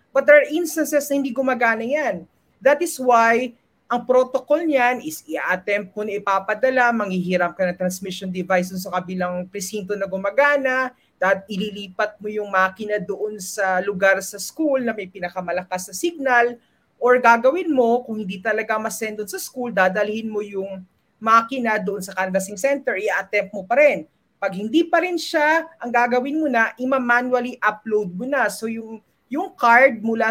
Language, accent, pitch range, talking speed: English, Filipino, 200-260 Hz, 160 wpm